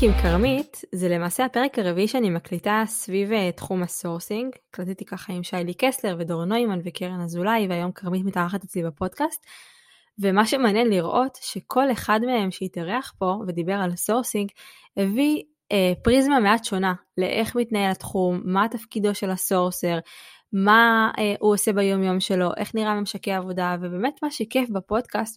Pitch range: 180-225 Hz